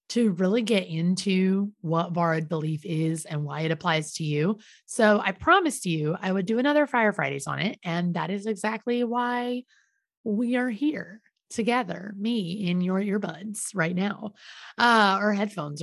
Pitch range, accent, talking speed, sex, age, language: 175-245 Hz, American, 165 wpm, female, 30-49, English